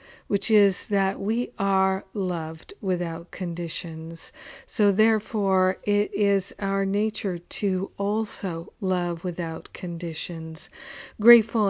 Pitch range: 185-205 Hz